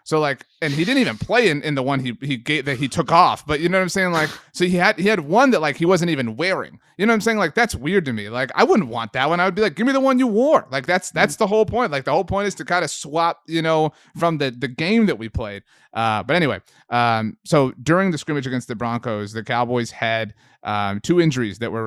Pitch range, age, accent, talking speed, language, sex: 110-165 Hz, 30-49, American, 290 wpm, English, male